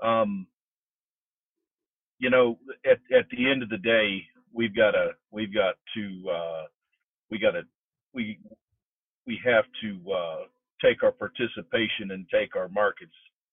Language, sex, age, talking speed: English, male, 50-69, 140 wpm